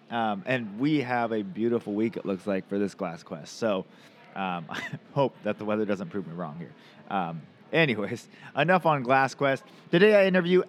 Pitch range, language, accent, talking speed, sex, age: 105-150 Hz, English, American, 195 wpm, male, 30-49